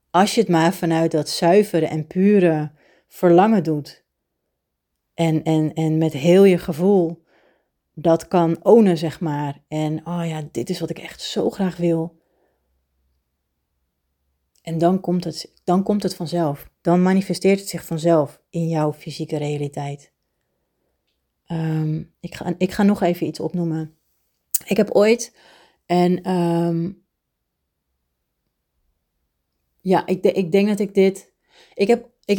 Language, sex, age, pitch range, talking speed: Dutch, female, 30-49, 155-190 Hz, 135 wpm